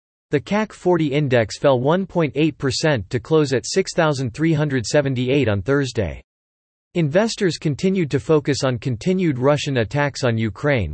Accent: American